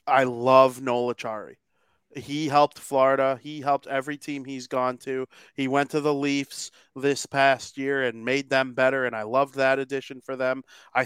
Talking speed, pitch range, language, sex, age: 180 wpm, 130-145 Hz, English, male, 30-49